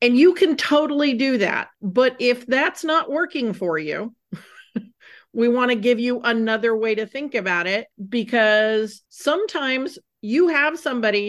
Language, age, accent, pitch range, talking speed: English, 40-59, American, 195-245 Hz, 155 wpm